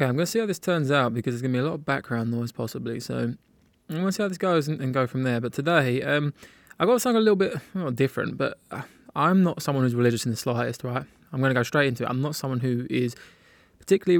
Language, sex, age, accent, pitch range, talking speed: English, male, 20-39, British, 125-155 Hz, 285 wpm